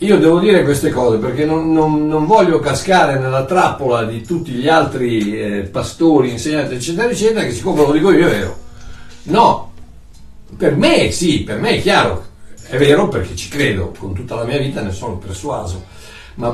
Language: Italian